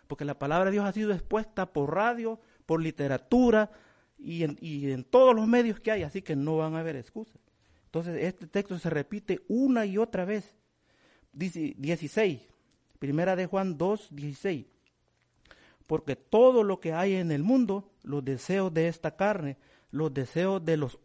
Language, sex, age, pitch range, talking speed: English, male, 50-69, 150-205 Hz, 175 wpm